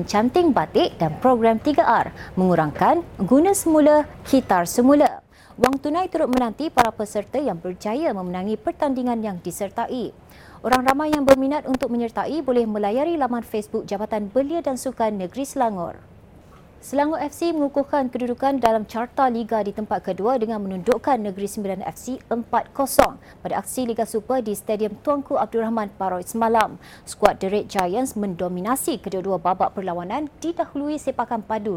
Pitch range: 210-275 Hz